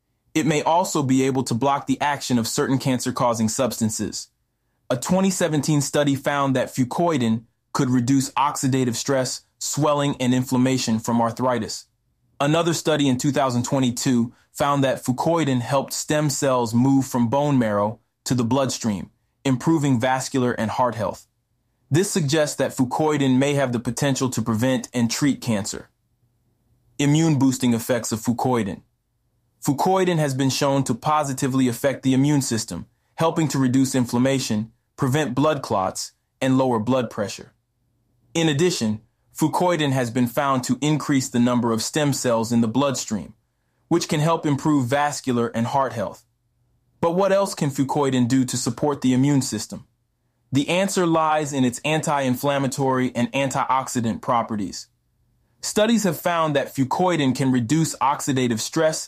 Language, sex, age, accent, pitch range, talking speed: English, male, 20-39, American, 120-145 Hz, 145 wpm